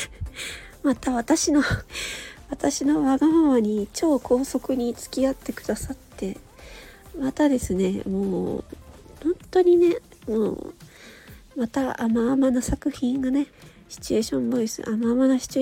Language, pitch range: Japanese, 220-310 Hz